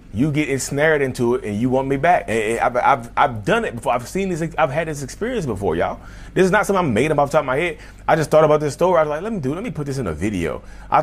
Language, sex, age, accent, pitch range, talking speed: English, male, 30-49, American, 120-165 Hz, 325 wpm